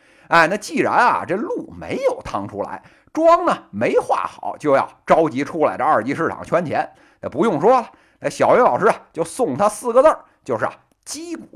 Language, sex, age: Chinese, male, 50-69